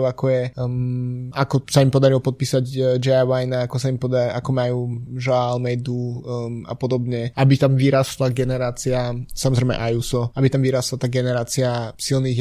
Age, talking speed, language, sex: 20-39, 165 wpm, Slovak, male